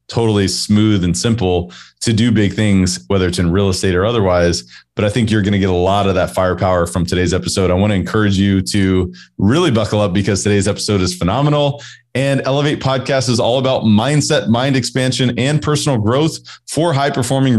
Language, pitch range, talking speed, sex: English, 95-120 Hz, 200 wpm, male